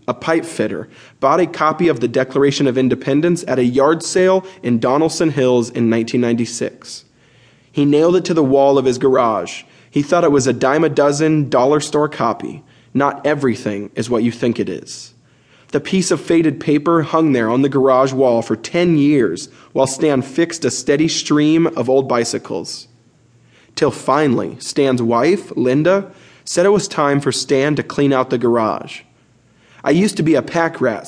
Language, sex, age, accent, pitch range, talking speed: English, male, 20-39, American, 120-155 Hz, 180 wpm